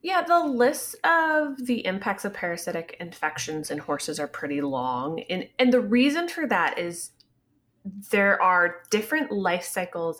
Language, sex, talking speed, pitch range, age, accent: English, female, 155 wpm, 160-225 Hz, 20-39, American